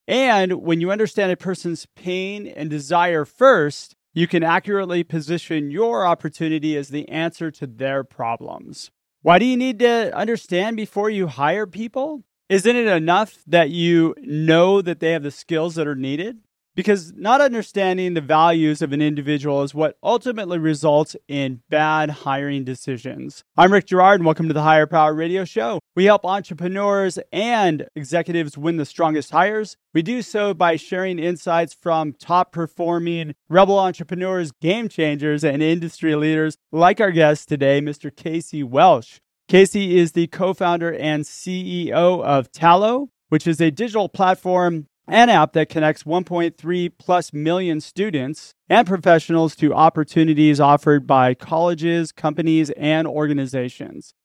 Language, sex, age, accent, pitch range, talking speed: English, male, 30-49, American, 155-185 Hz, 145 wpm